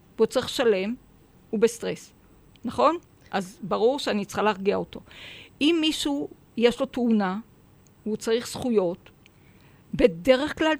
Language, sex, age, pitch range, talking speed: Hebrew, female, 50-69, 205-265 Hz, 120 wpm